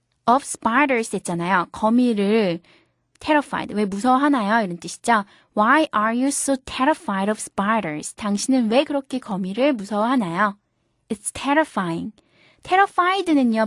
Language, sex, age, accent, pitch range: Korean, female, 20-39, native, 210-285 Hz